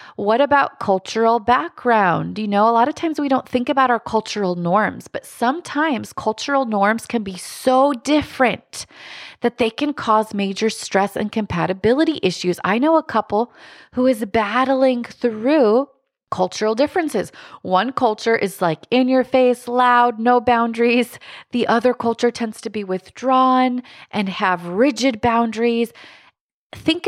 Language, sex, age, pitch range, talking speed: English, female, 30-49, 185-245 Hz, 145 wpm